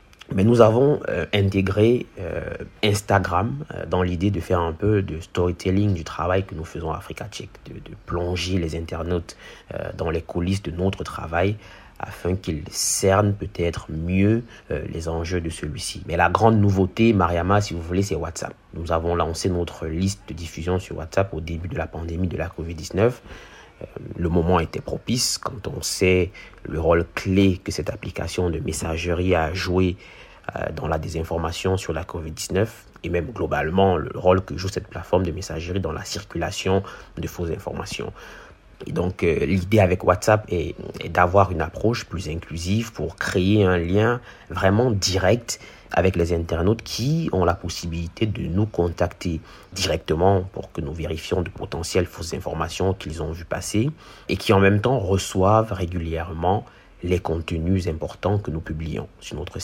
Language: English